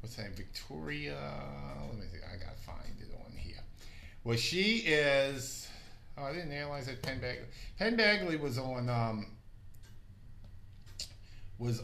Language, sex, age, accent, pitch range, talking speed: English, male, 50-69, American, 105-130 Hz, 145 wpm